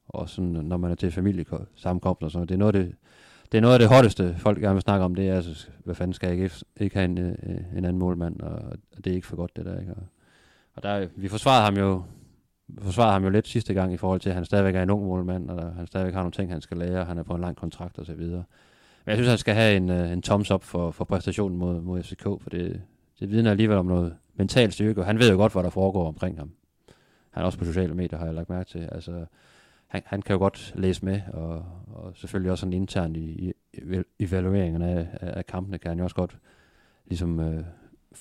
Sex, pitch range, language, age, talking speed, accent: male, 90-100 Hz, Danish, 30-49, 250 wpm, native